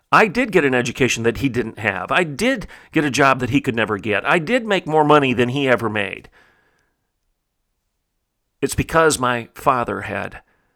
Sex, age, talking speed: male, 40-59, 185 wpm